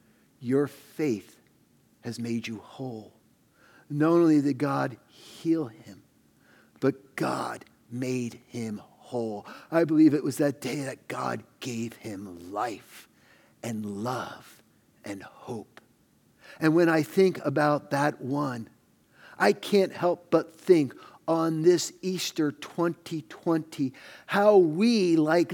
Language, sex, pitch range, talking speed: English, male, 140-210 Hz, 120 wpm